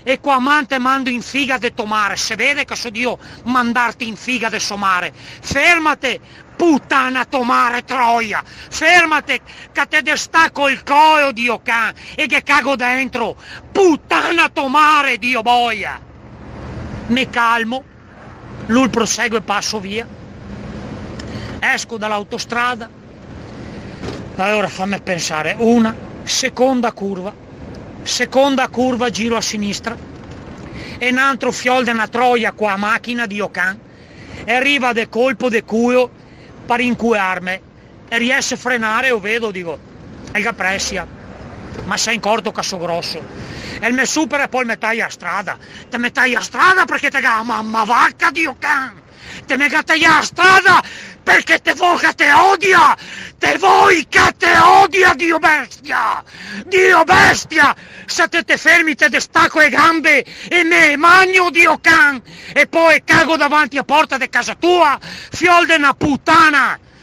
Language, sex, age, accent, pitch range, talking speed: Italian, male, 40-59, native, 230-305 Hz, 140 wpm